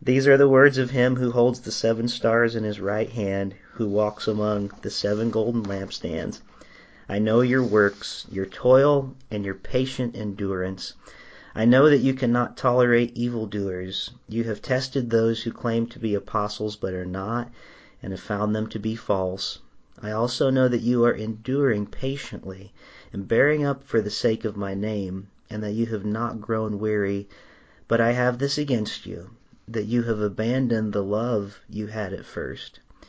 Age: 40-59